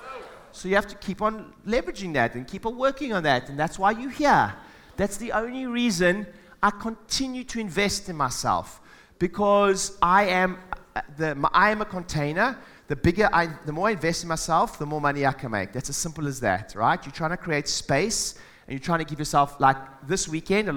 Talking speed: 215 wpm